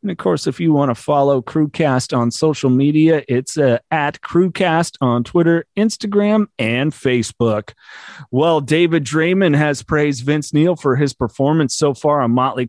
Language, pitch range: English, 125-170 Hz